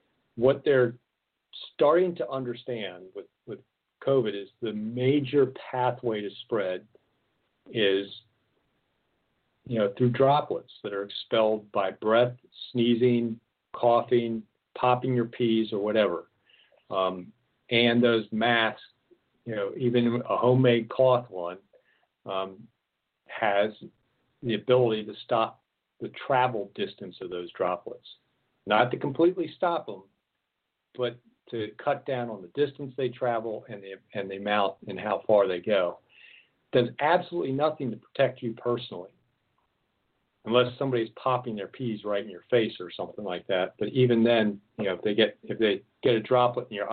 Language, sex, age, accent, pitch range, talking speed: English, male, 50-69, American, 110-125 Hz, 145 wpm